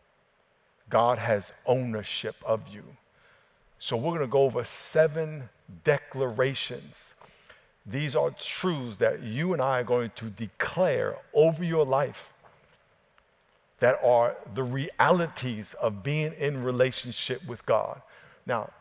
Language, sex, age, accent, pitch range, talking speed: English, male, 50-69, American, 120-175 Hz, 120 wpm